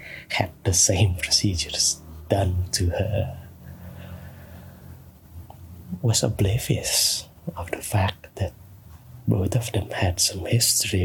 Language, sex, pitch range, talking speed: English, male, 90-110 Hz, 110 wpm